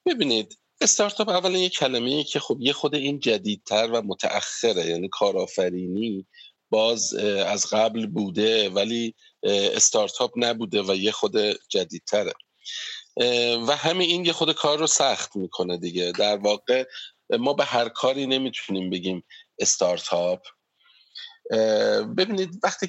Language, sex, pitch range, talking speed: Persian, male, 105-170 Hz, 125 wpm